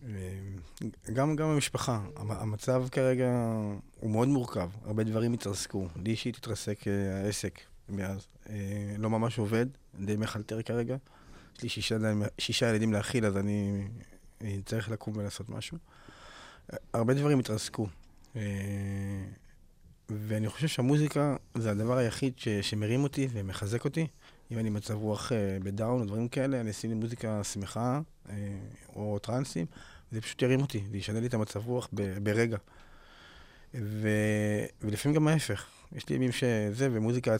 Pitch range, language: 105-125 Hz, Hebrew